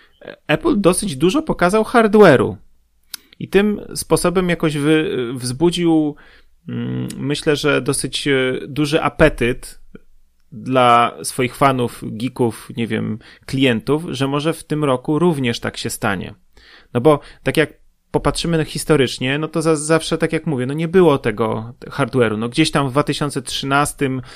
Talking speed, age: 130 wpm, 30-49